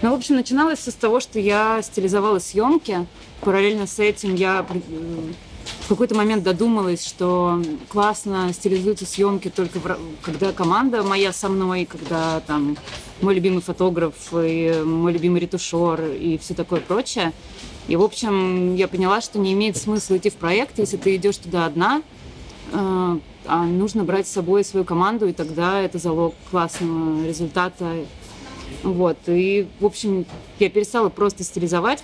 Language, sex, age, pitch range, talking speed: Russian, female, 20-39, 170-205 Hz, 150 wpm